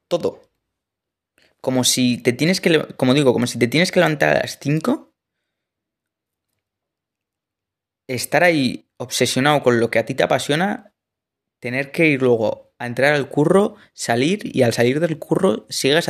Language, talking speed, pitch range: Spanish, 155 wpm, 120-150 Hz